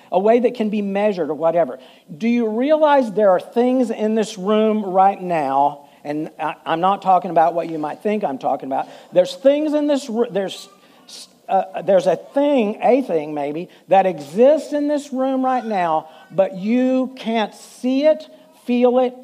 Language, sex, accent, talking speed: English, male, American, 175 wpm